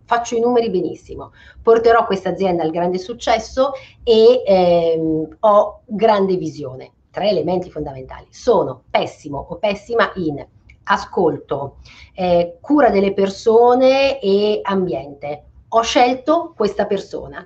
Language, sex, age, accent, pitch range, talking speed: Italian, female, 40-59, native, 175-230 Hz, 115 wpm